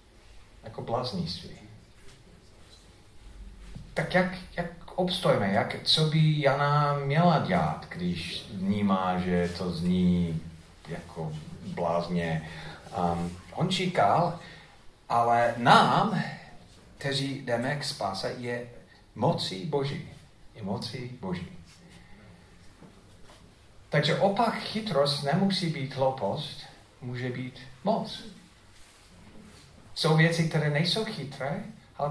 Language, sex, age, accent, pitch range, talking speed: Czech, male, 40-59, native, 105-160 Hz, 90 wpm